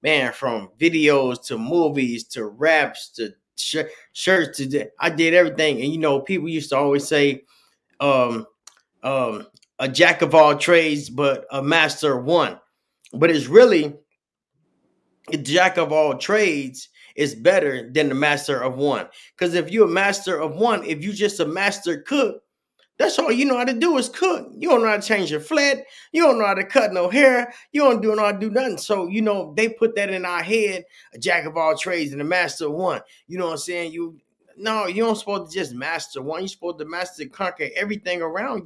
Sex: male